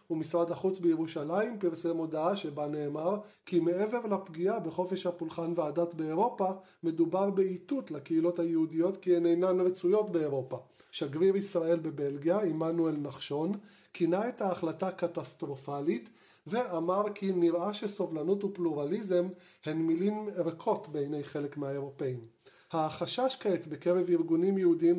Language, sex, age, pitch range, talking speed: Hebrew, male, 30-49, 160-190 Hz, 115 wpm